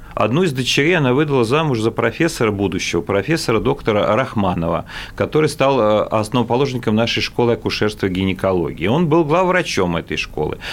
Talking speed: 140 wpm